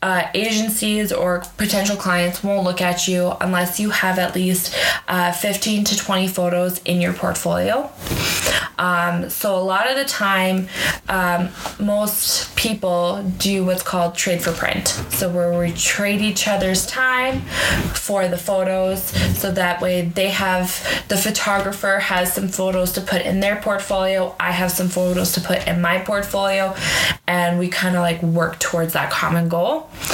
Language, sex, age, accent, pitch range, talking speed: English, female, 20-39, American, 175-195 Hz, 165 wpm